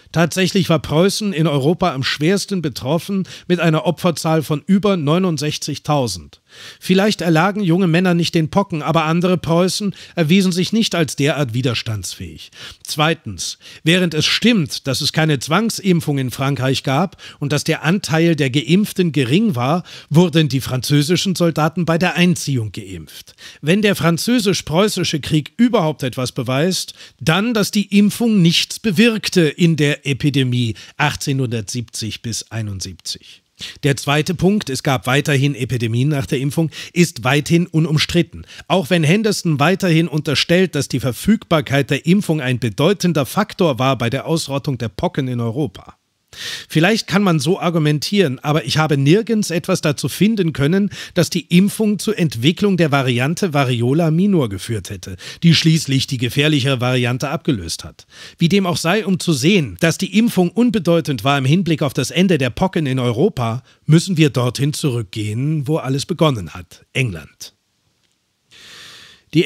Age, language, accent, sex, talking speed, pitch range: 50-69, German, German, male, 150 wpm, 135-180 Hz